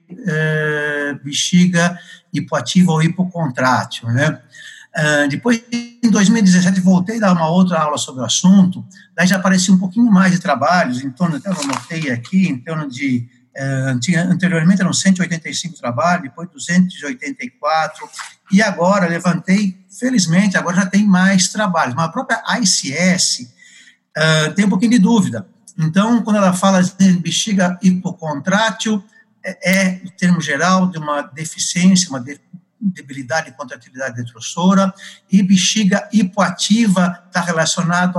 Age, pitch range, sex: 60-79, 150-195 Hz, male